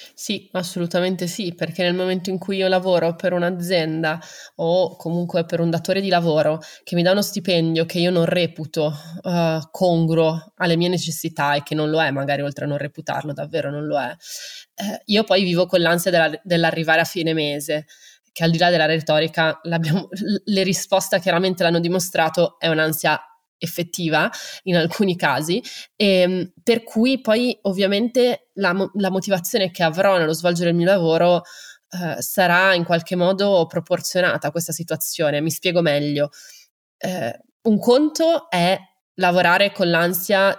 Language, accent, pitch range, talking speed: Italian, native, 160-190 Hz, 155 wpm